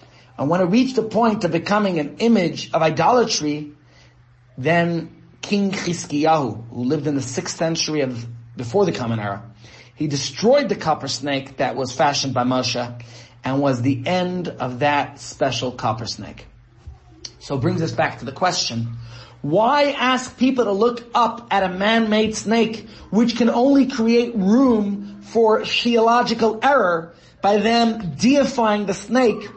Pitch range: 135-220 Hz